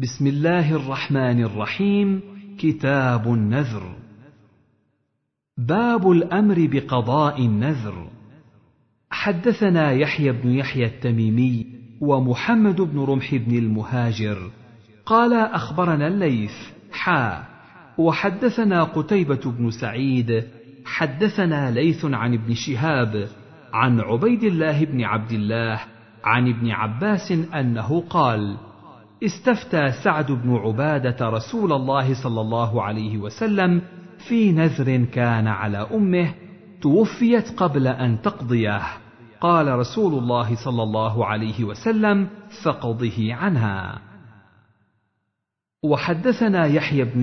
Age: 50-69